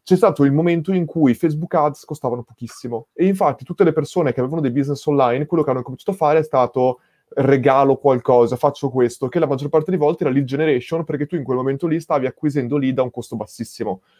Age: 20-39